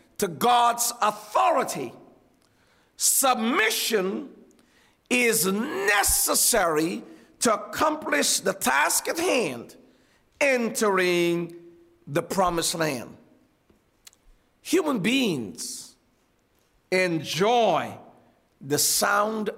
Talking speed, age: 65 wpm, 50-69